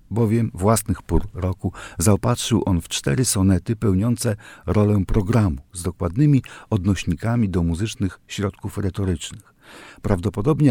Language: Polish